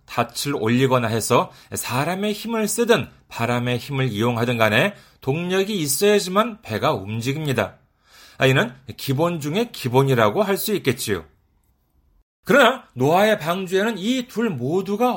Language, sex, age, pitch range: Korean, male, 40-59, 130-215 Hz